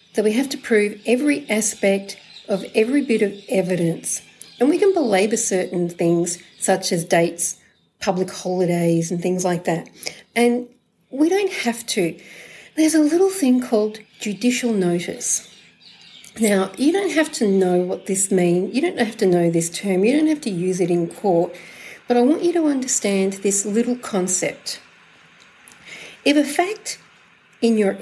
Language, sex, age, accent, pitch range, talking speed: English, female, 40-59, Australian, 185-250 Hz, 165 wpm